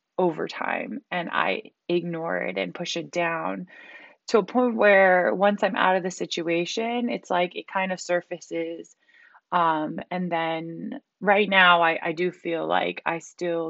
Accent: American